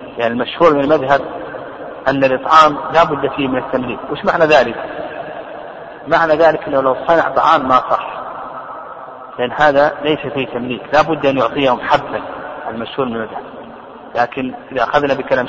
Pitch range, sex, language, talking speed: 130-155 Hz, male, Arabic, 150 wpm